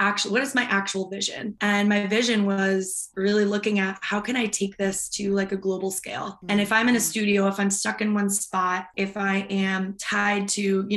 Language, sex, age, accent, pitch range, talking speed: English, female, 20-39, American, 190-210 Hz, 225 wpm